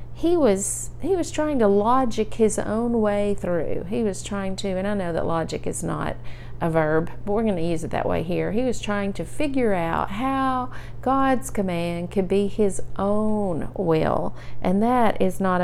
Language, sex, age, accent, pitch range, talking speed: English, female, 40-59, American, 170-205 Hz, 195 wpm